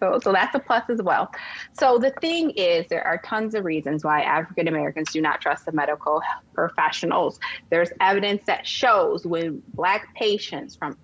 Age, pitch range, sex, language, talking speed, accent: 30-49, 155-245 Hz, female, English, 175 wpm, American